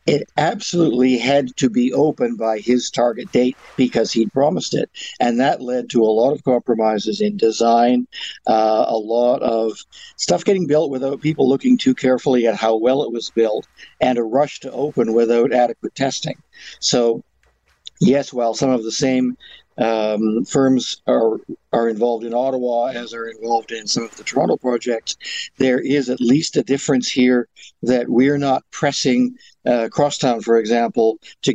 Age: 60-79